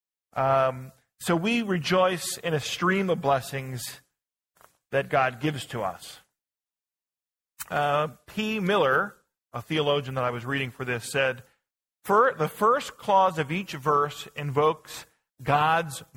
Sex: male